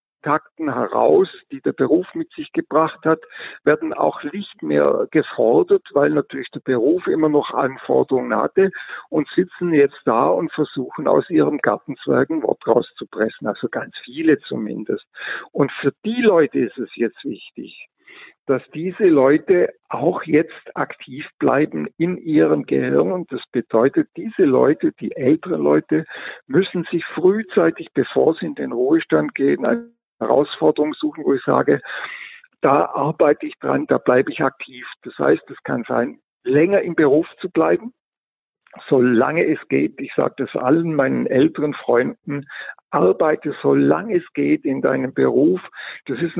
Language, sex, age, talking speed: German, male, 60-79, 145 wpm